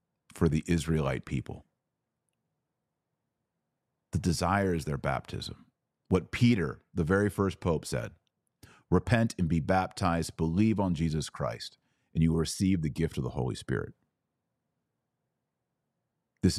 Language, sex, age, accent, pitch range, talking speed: English, male, 40-59, American, 80-115 Hz, 125 wpm